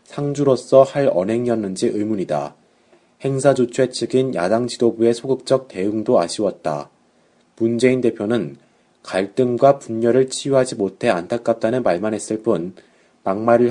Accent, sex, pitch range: native, male, 110-130 Hz